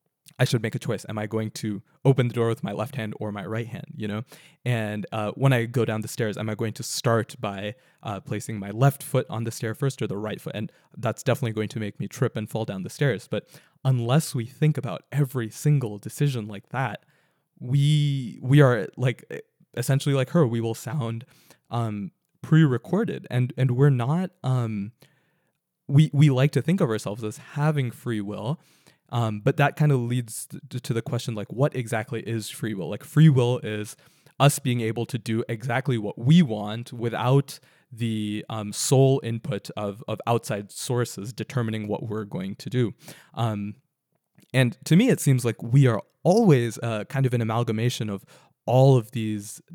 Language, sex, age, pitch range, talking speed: English, male, 20-39, 110-140 Hz, 195 wpm